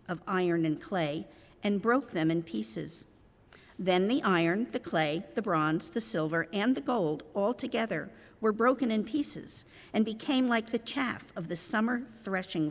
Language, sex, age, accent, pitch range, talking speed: English, female, 50-69, American, 165-220 Hz, 170 wpm